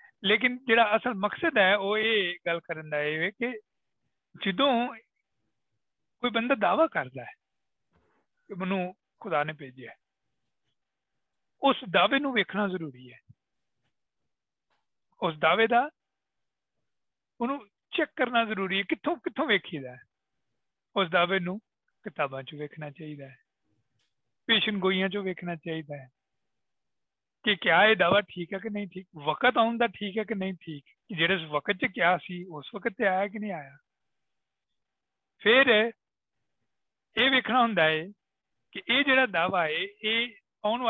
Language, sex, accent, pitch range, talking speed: Bengali, male, native, 165-245 Hz, 40 wpm